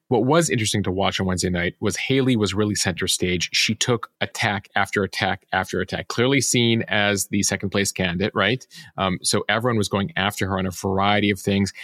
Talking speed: 210 wpm